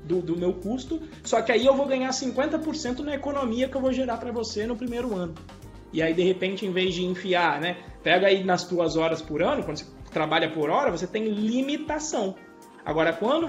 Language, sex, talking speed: Portuguese, male, 215 wpm